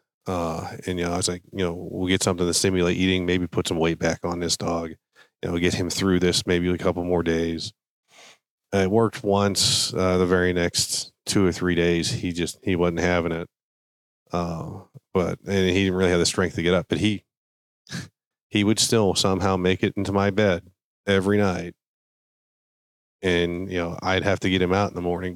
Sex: male